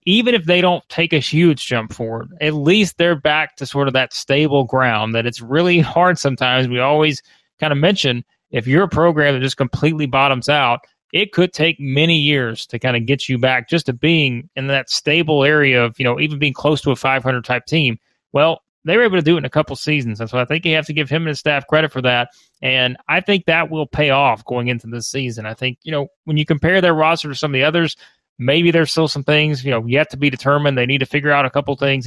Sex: male